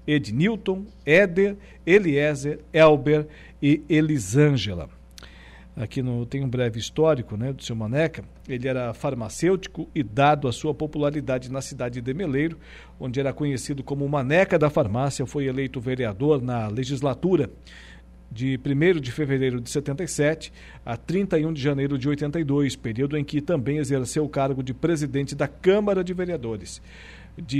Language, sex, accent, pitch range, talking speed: Portuguese, male, Brazilian, 130-155 Hz, 145 wpm